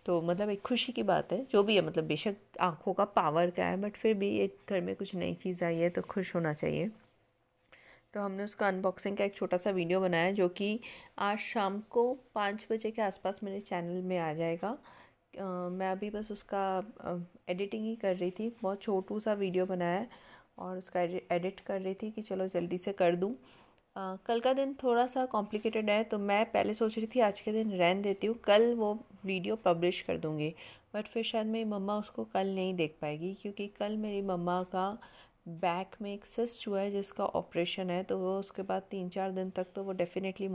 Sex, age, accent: female, 30-49, native